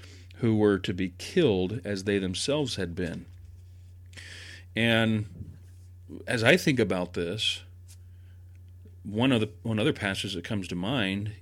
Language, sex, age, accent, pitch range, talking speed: English, male, 40-59, American, 90-115 Hz, 135 wpm